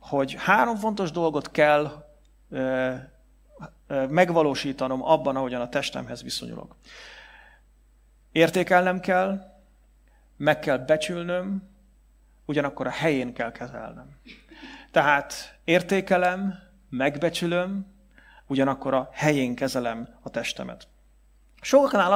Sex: male